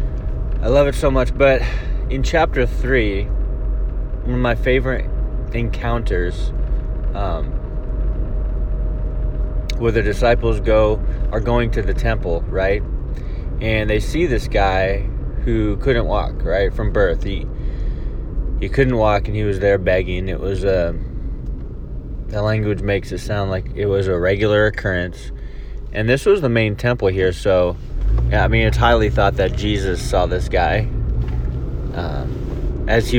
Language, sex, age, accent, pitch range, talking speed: English, male, 20-39, American, 90-120 Hz, 145 wpm